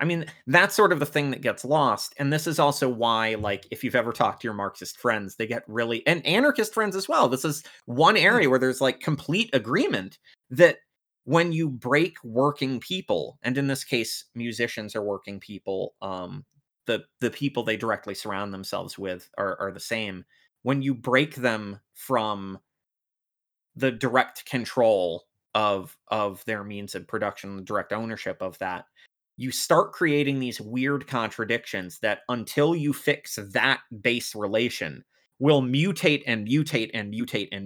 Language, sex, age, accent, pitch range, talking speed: English, male, 30-49, American, 110-145 Hz, 170 wpm